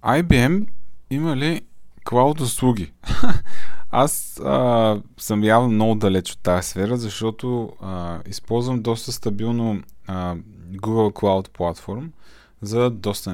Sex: male